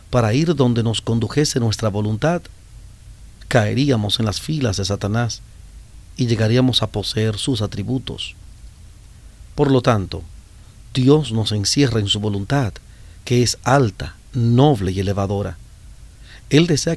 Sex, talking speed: male, 125 wpm